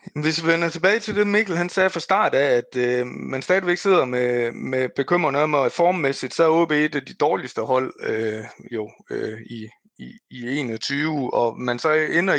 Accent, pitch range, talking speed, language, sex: native, 120-170 Hz, 205 wpm, Danish, male